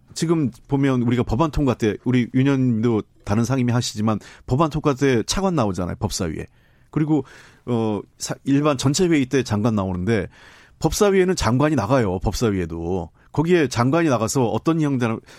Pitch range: 115-150 Hz